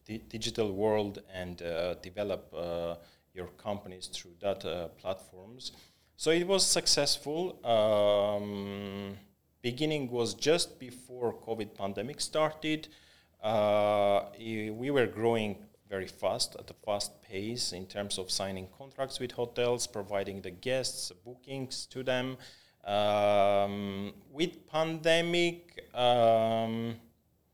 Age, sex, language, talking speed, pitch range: 30-49, male, English, 110 wpm, 100-125 Hz